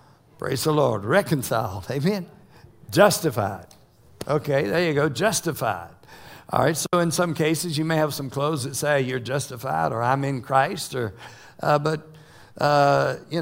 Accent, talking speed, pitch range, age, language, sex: American, 155 wpm, 130-170 Hz, 60-79, English, male